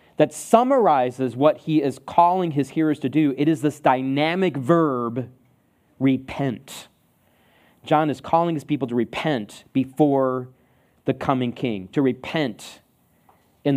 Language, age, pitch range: English, 40-59, 135-185 Hz